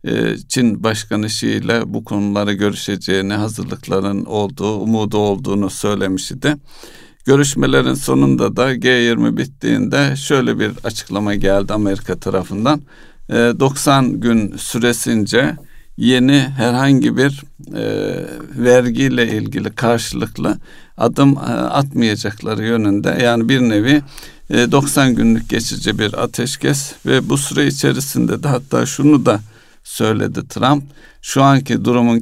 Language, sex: Turkish, male